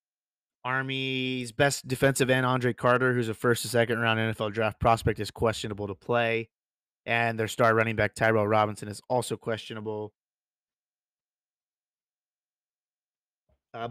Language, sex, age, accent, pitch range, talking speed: English, male, 30-49, American, 110-130 Hz, 115 wpm